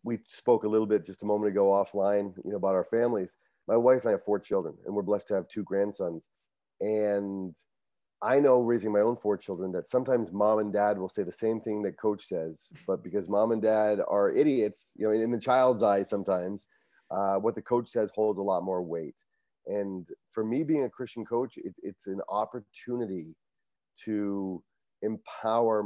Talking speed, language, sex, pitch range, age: 200 wpm, English, male, 95-110 Hz, 30-49